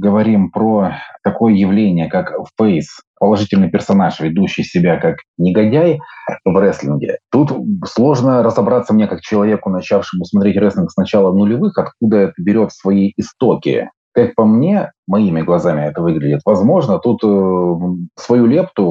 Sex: male